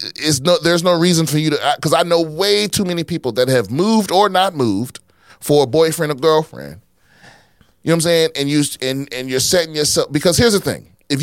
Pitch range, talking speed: 120-180 Hz, 230 wpm